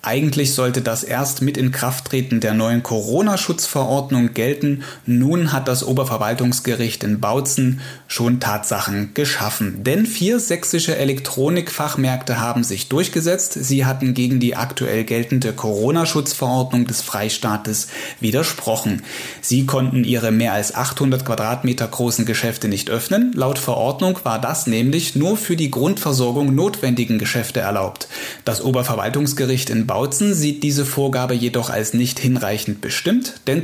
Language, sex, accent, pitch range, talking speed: German, male, German, 115-150 Hz, 130 wpm